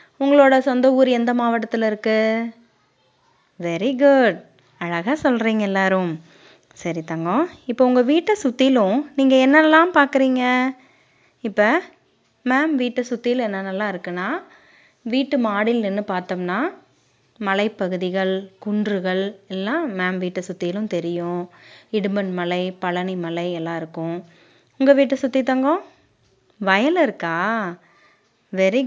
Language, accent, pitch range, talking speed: Tamil, native, 180-265 Hz, 100 wpm